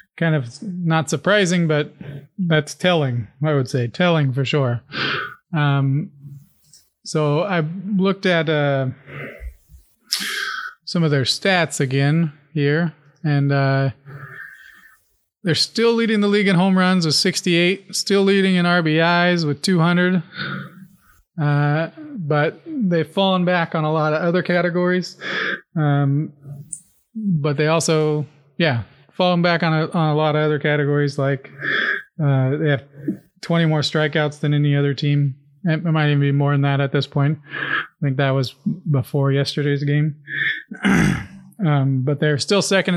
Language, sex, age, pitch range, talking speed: English, male, 30-49, 145-180 Hz, 140 wpm